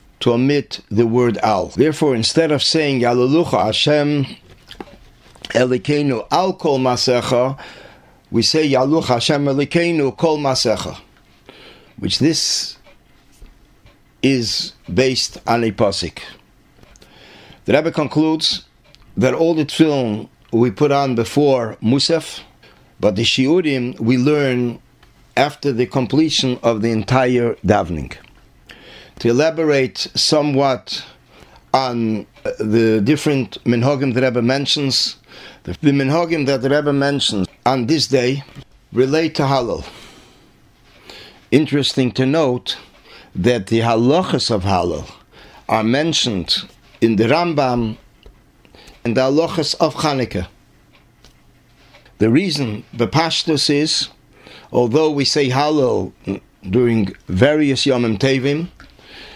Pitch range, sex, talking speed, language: 115-150 Hz, male, 105 wpm, English